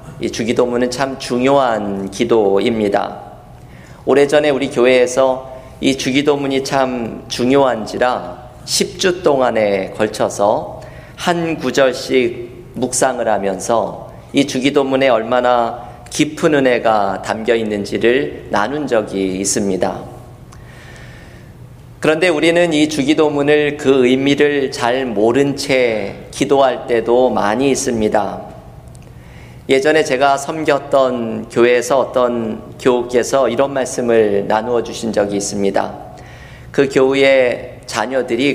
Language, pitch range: Korean, 115-140 Hz